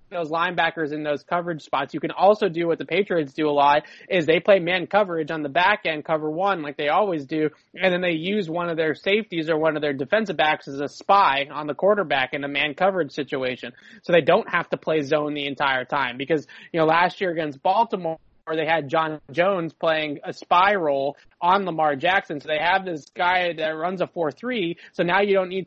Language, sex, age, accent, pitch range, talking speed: English, male, 20-39, American, 150-175 Hz, 230 wpm